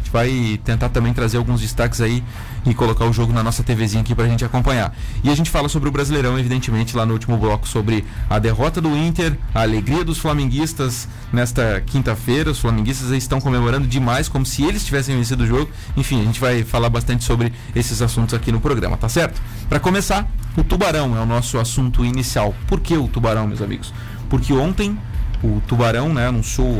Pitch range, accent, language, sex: 115-135 Hz, Brazilian, Portuguese, male